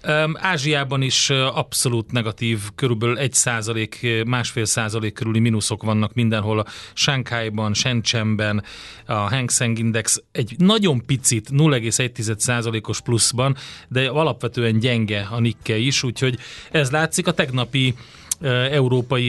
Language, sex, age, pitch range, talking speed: Hungarian, male, 30-49, 115-140 Hz, 115 wpm